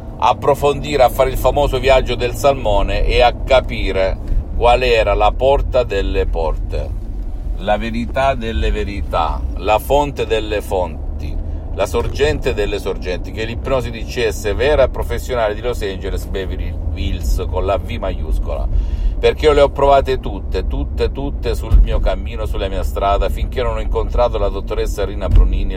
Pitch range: 80-110 Hz